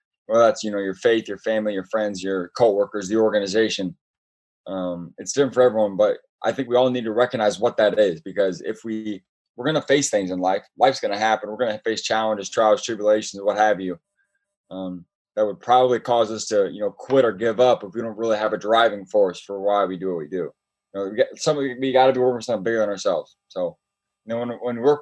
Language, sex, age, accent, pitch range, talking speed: English, male, 20-39, American, 105-125 Hz, 250 wpm